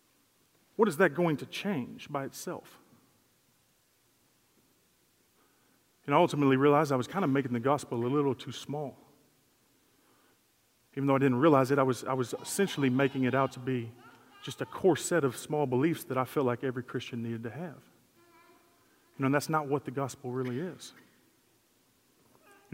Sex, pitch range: male, 125-150 Hz